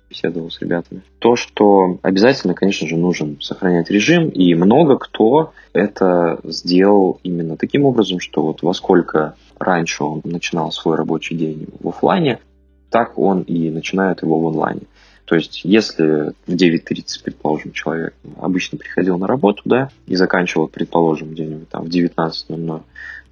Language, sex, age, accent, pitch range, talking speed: Russian, male, 20-39, native, 80-95 Hz, 145 wpm